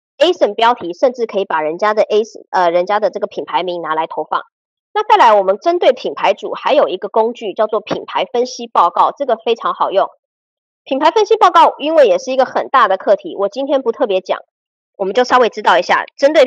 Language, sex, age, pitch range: Chinese, male, 20-39, 200-300 Hz